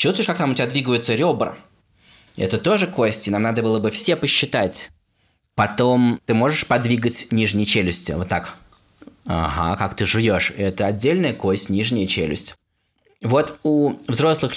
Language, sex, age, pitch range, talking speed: Russian, male, 20-39, 100-125 Hz, 150 wpm